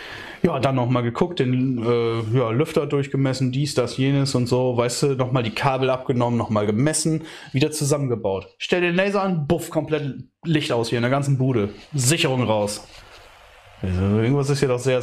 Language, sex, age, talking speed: German, male, 20-39, 180 wpm